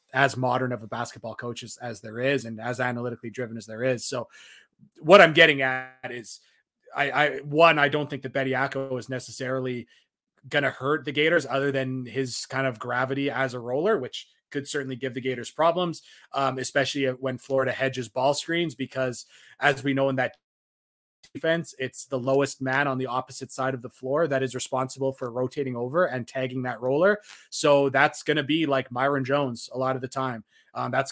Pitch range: 130-145 Hz